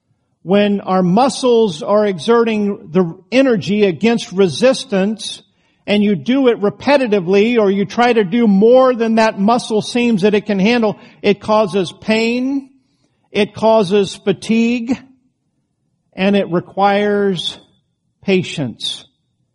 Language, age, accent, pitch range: English, 50-69, American, 170-215 Hz